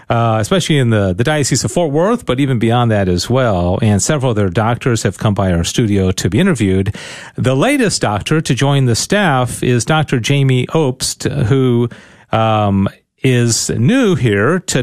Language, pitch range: English, 110-145 Hz